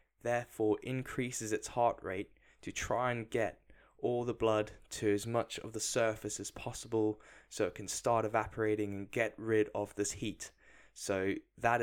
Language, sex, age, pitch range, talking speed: English, male, 10-29, 100-115 Hz, 165 wpm